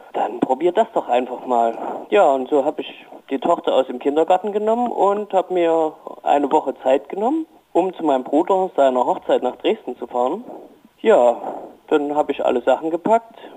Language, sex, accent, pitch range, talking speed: German, male, German, 140-190 Hz, 180 wpm